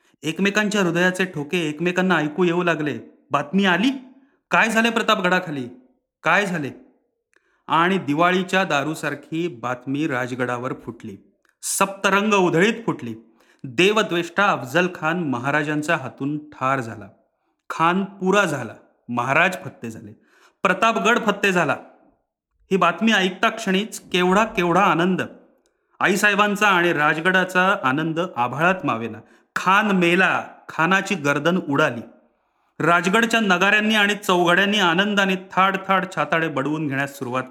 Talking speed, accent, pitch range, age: 110 wpm, native, 145-195 Hz, 30-49